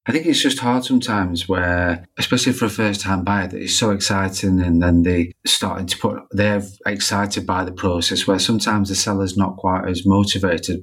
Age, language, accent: 30-49, English, British